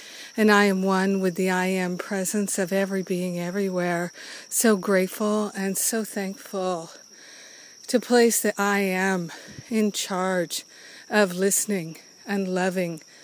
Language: English